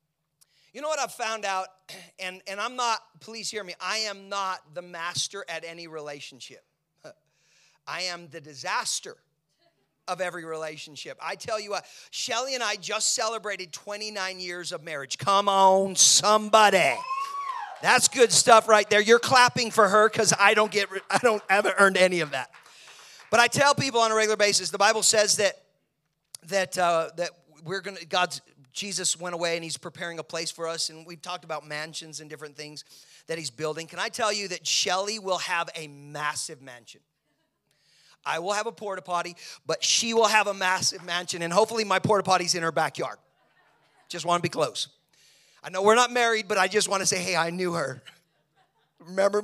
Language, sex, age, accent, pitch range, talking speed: English, male, 40-59, American, 160-210 Hz, 190 wpm